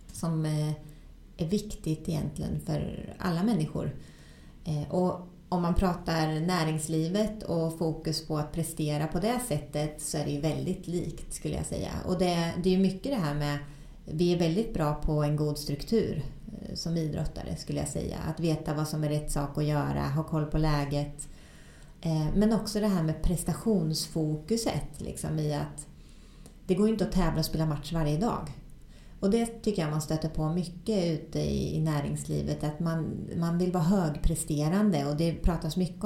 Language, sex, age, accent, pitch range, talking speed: Swedish, female, 30-49, native, 150-185 Hz, 170 wpm